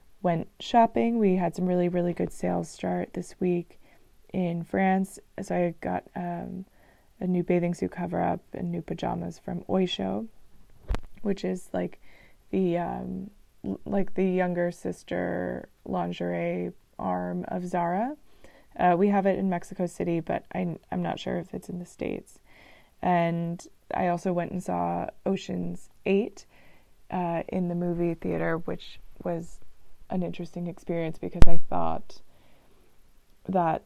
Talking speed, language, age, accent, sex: 145 wpm, English, 20-39, American, female